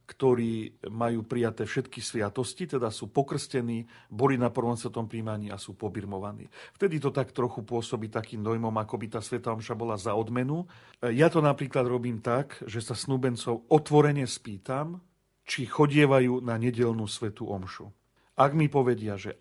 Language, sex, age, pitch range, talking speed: Slovak, male, 40-59, 110-130 Hz, 150 wpm